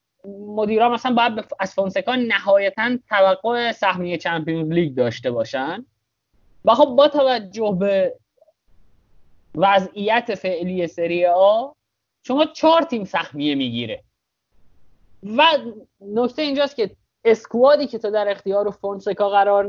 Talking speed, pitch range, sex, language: 115 wpm, 165-235 Hz, male, Persian